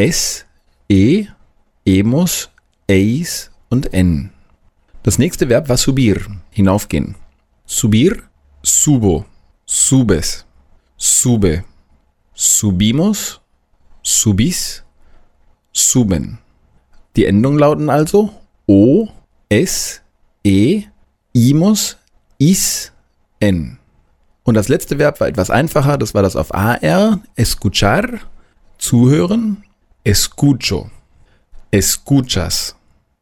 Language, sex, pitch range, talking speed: German, male, 90-135 Hz, 85 wpm